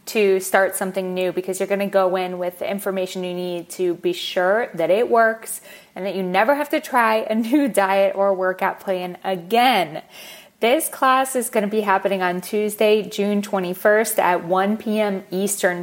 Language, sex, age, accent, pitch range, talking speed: English, female, 20-39, American, 190-225 Hz, 190 wpm